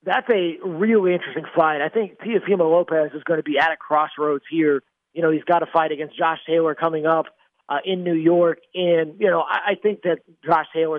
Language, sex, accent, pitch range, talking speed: English, male, American, 145-165 Hz, 225 wpm